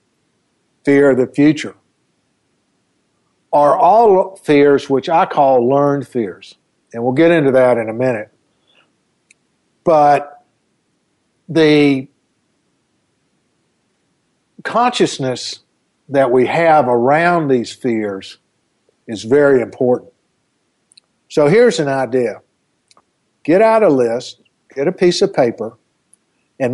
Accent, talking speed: American, 105 wpm